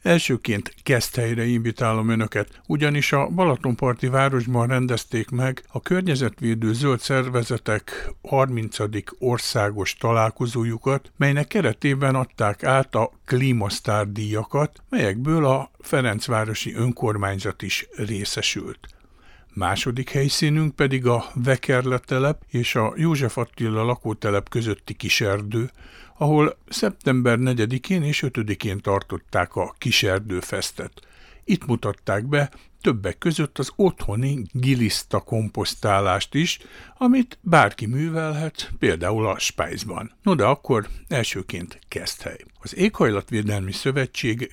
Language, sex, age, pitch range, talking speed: Hungarian, male, 60-79, 110-140 Hz, 100 wpm